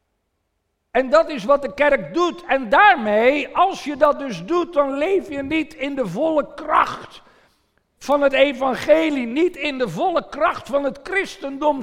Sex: male